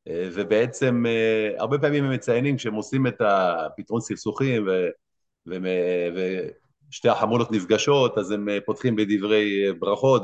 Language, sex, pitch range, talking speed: Hebrew, male, 100-125 Hz, 115 wpm